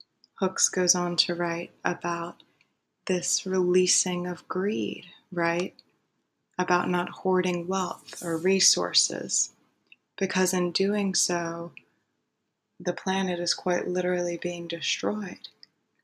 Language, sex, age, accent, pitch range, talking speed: English, female, 20-39, American, 175-185 Hz, 105 wpm